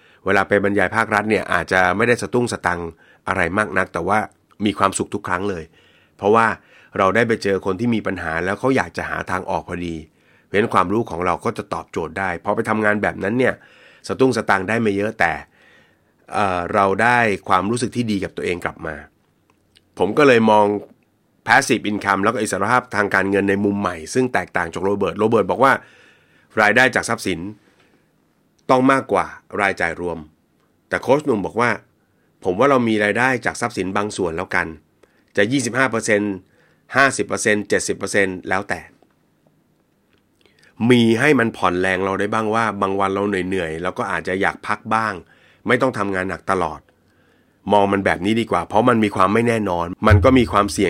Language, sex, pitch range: Thai, male, 90-110 Hz